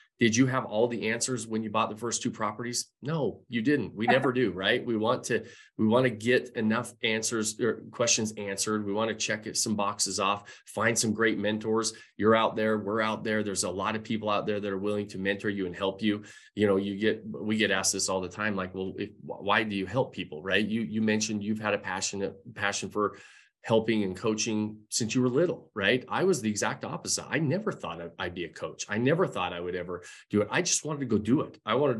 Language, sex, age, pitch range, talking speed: English, male, 30-49, 100-115 Hz, 245 wpm